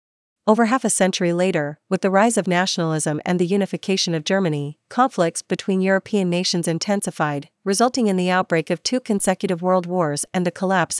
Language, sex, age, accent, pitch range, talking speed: English, female, 40-59, American, 165-195 Hz, 175 wpm